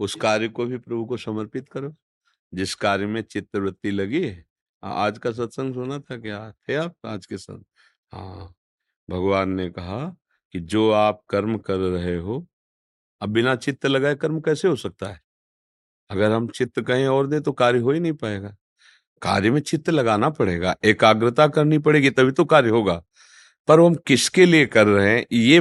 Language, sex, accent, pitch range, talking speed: Hindi, male, native, 100-135 Hz, 170 wpm